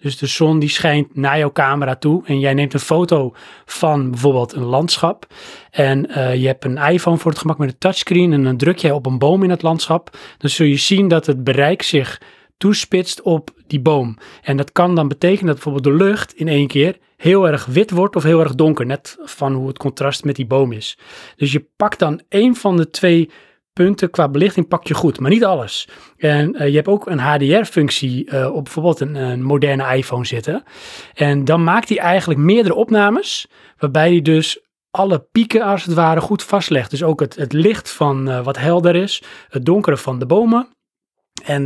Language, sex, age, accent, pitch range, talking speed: Dutch, male, 30-49, Dutch, 140-185 Hz, 210 wpm